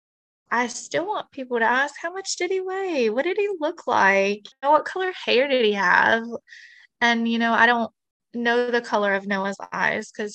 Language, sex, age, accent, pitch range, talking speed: English, female, 20-39, American, 215-270 Hz, 195 wpm